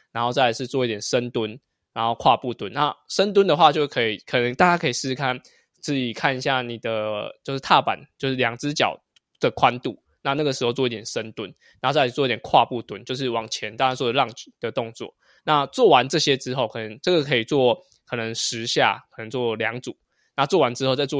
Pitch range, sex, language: 115-140 Hz, male, Chinese